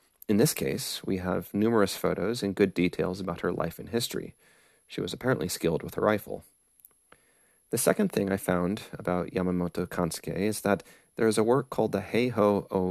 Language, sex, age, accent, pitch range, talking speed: English, male, 30-49, American, 90-105 Hz, 185 wpm